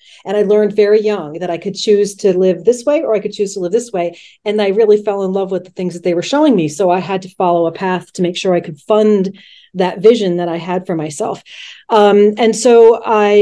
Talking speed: 265 wpm